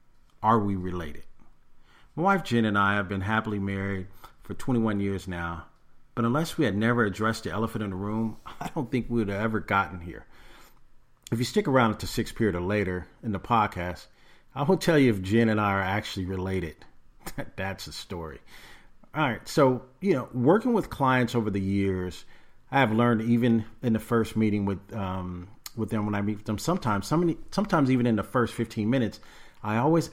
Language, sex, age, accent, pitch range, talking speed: English, male, 40-59, American, 100-120 Hz, 200 wpm